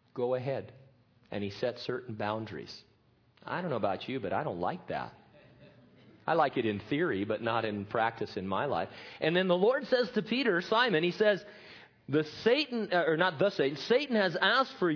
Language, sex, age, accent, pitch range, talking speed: English, male, 40-59, American, 115-190 Hz, 195 wpm